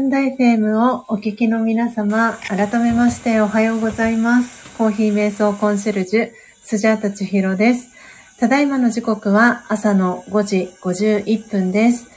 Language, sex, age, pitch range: Japanese, female, 40-59, 200-240 Hz